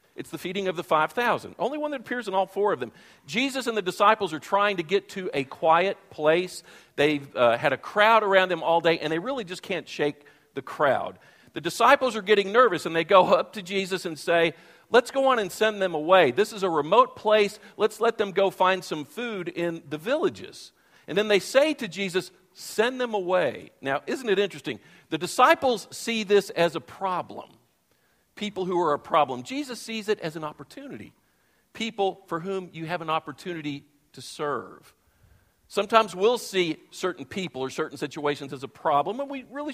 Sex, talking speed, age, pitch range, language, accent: male, 200 wpm, 50-69, 160-225 Hz, English, American